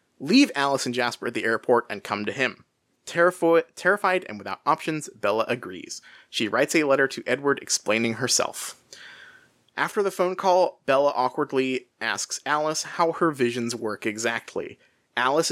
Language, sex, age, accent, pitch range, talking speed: English, male, 30-49, American, 120-160 Hz, 155 wpm